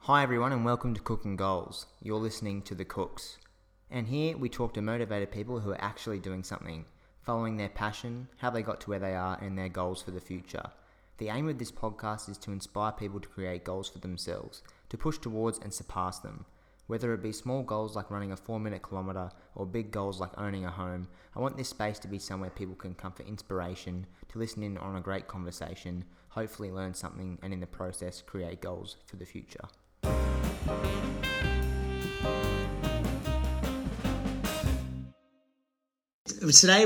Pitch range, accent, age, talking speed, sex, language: 95-125 Hz, Australian, 20-39, 175 wpm, male, English